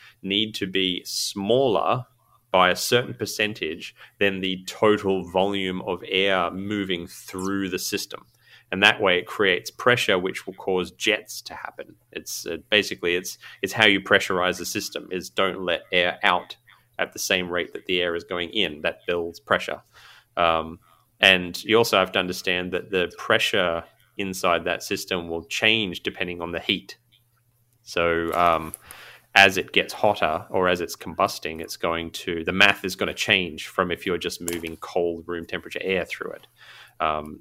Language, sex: English, male